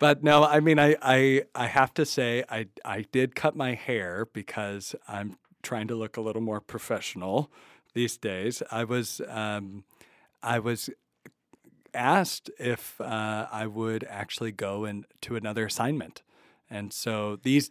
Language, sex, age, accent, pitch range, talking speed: English, male, 40-59, American, 110-135 Hz, 155 wpm